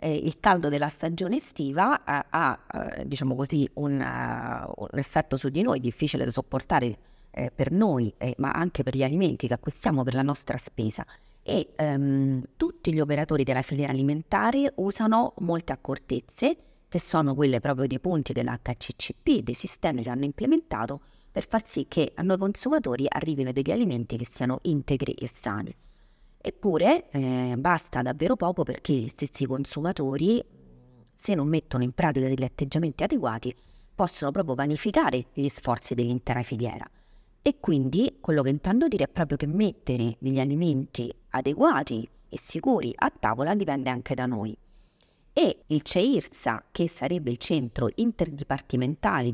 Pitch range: 130-170 Hz